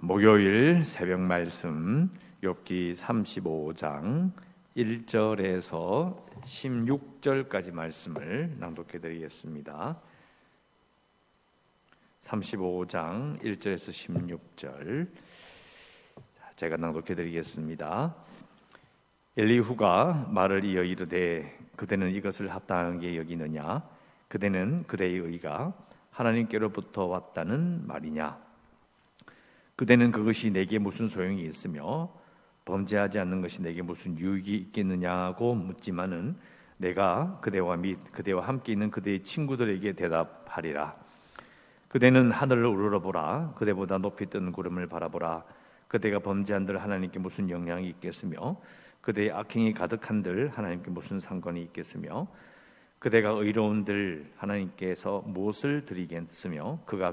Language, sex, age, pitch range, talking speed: English, male, 50-69, 90-110 Hz, 85 wpm